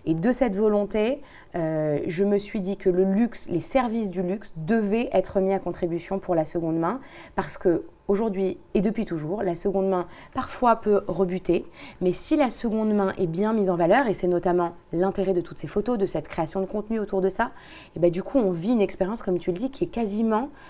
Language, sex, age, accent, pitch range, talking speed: French, female, 20-39, French, 180-215 Hz, 225 wpm